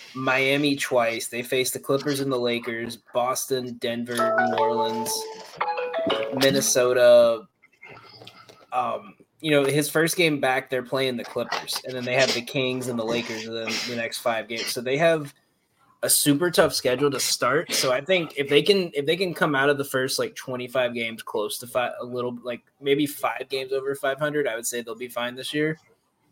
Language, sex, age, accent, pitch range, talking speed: English, male, 20-39, American, 120-140 Hz, 200 wpm